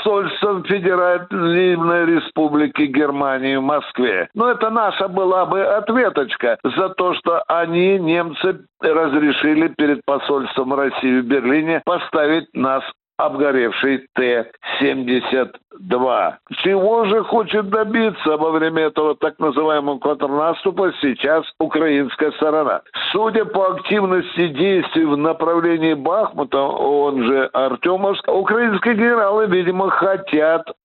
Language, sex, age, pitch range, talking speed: Russian, male, 60-79, 145-195 Hz, 105 wpm